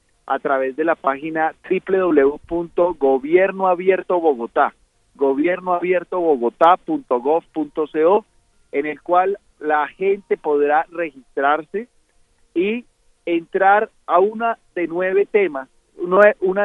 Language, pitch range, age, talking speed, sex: Spanish, 140-185 Hz, 40-59, 75 wpm, male